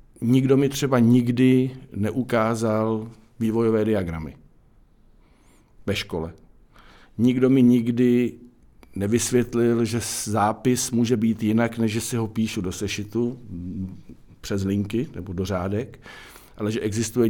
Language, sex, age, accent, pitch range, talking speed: Czech, male, 50-69, native, 100-120 Hz, 115 wpm